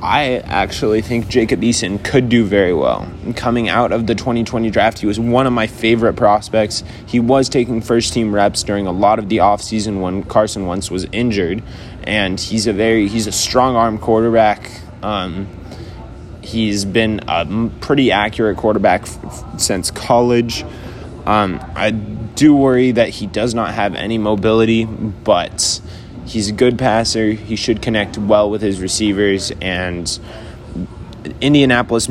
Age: 20-39